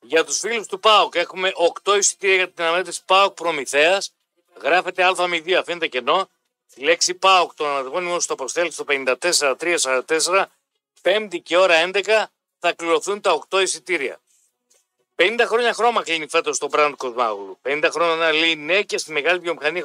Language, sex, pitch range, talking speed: Greek, male, 165-210 Hz, 170 wpm